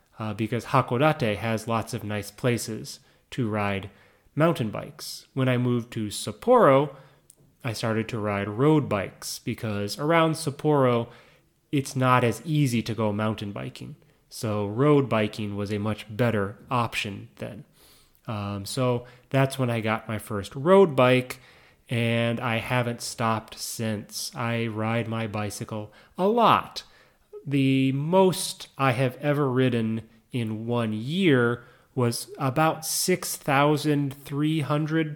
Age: 30-49